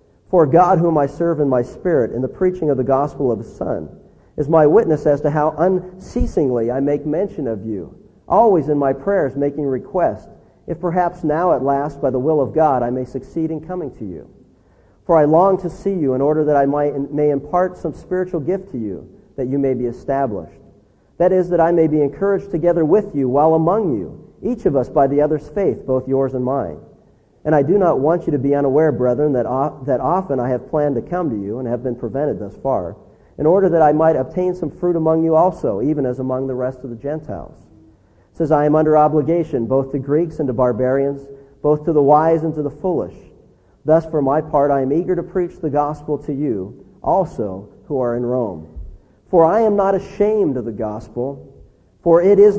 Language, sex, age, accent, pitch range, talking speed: English, male, 50-69, American, 130-165 Hz, 220 wpm